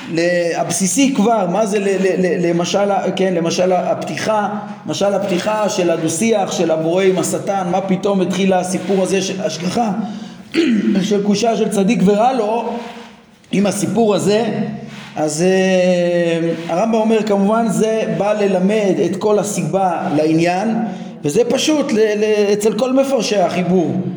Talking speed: 125 wpm